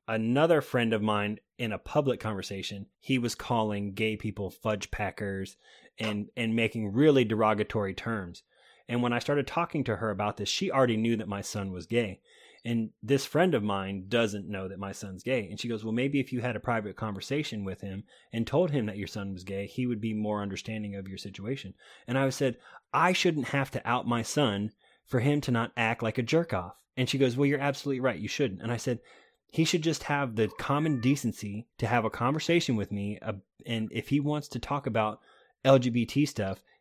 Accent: American